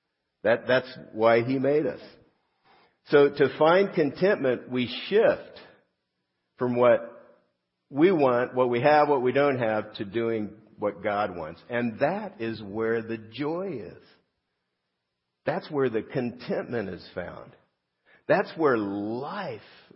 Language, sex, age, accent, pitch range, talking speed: English, male, 50-69, American, 100-125 Hz, 130 wpm